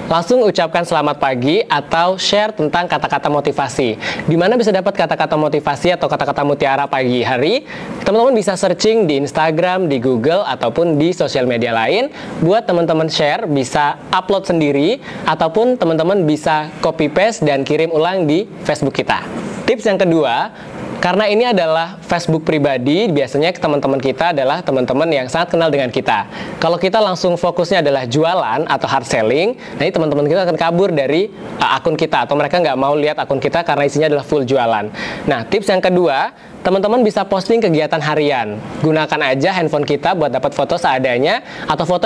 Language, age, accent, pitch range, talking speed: Indonesian, 20-39, native, 145-185 Hz, 165 wpm